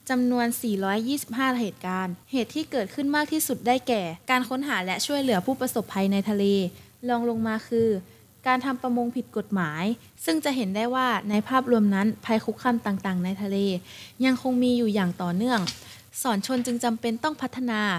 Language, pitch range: Thai, 205-255 Hz